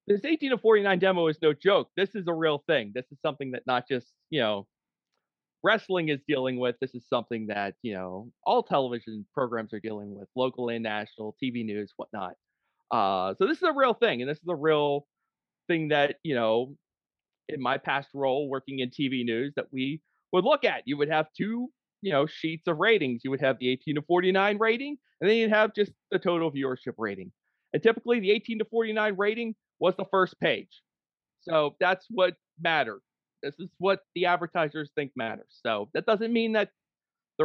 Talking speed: 210 wpm